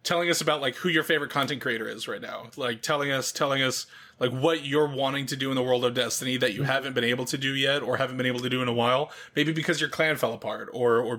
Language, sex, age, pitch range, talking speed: English, male, 20-39, 120-145 Hz, 285 wpm